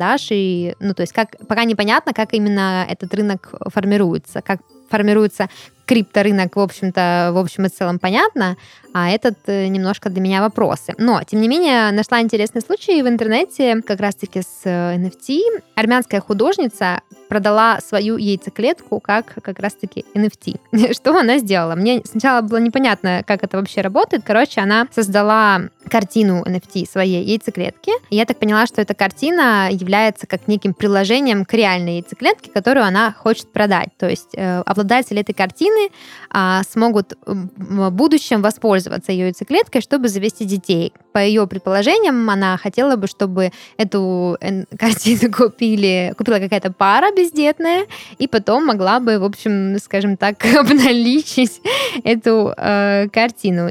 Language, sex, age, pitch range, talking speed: Russian, female, 20-39, 190-230 Hz, 135 wpm